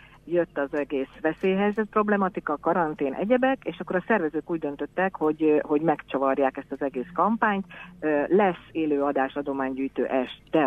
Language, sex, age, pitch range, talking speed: Hungarian, female, 50-69, 135-160 Hz, 135 wpm